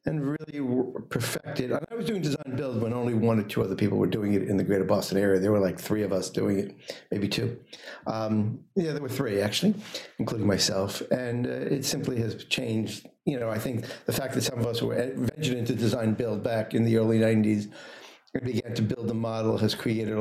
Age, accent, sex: 50-69, American, male